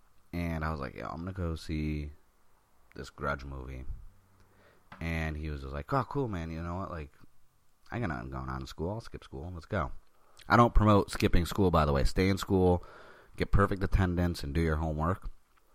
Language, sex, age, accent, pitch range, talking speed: English, male, 30-49, American, 75-95 Hz, 210 wpm